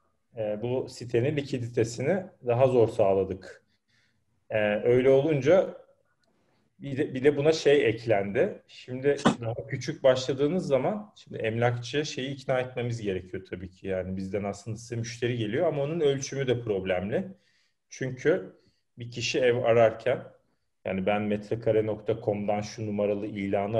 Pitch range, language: 105-140 Hz, Turkish